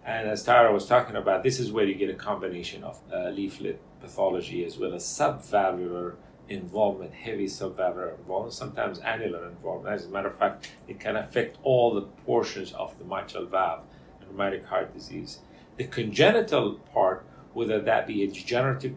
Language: English